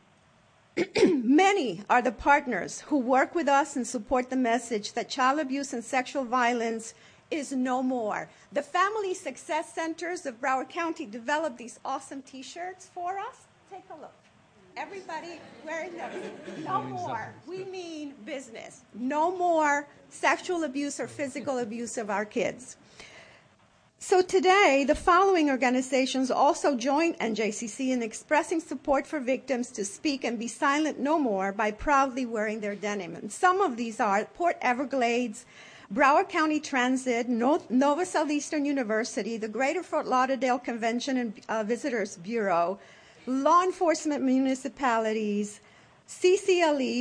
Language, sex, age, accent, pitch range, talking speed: English, female, 50-69, American, 240-315 Hz, 135 wpm